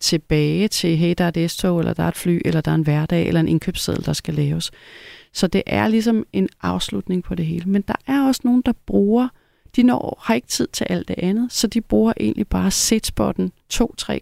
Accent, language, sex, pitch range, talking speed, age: native, Danish, female, 155-195 Hz, 235 wpm, 30-49